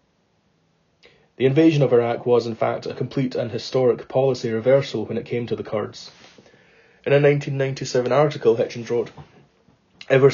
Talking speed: 150 wpm